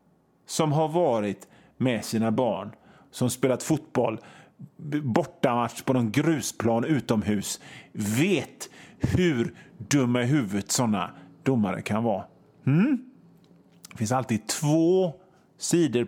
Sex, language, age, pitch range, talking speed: male, Swedish, 30-49, 125-170 Hz, 110 wpm